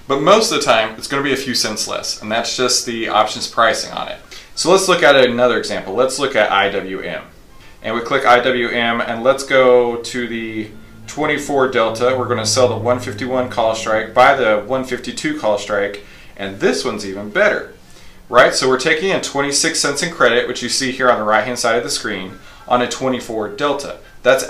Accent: American